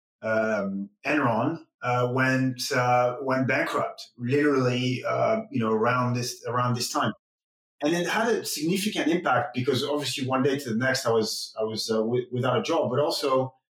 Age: 30-49